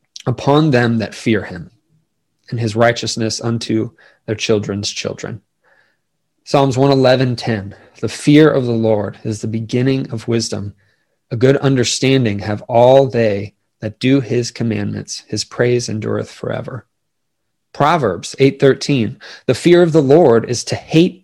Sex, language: male, English